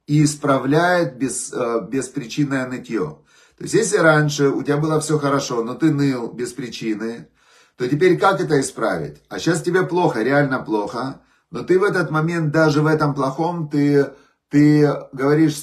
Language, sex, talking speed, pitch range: Russian, male, 155 wpm, 125-150 Hz